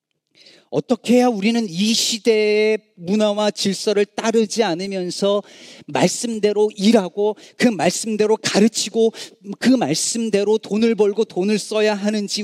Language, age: Korean, 40-59